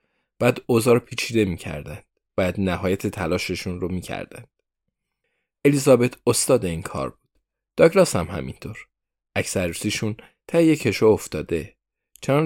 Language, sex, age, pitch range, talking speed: Persian, male, 20-39, 95-120 Hz, 115 wpm